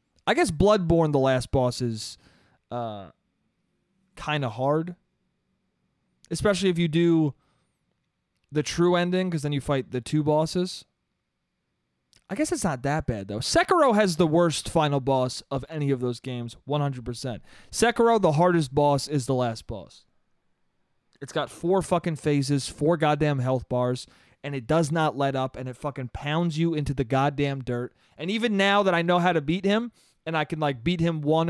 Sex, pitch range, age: male, 130-175 Hz, 20-39